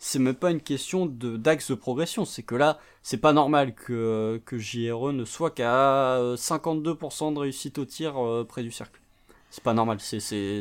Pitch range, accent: 125-155 Hz, French